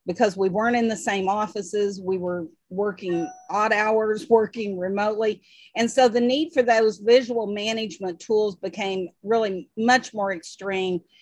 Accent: American